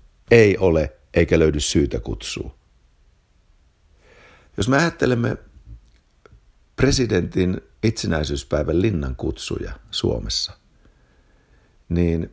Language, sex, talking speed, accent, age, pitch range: Finnish, male, 75 wpm, native, 60-79, 70-100 Hz